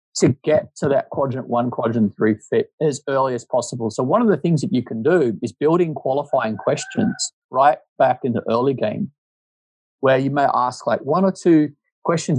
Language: English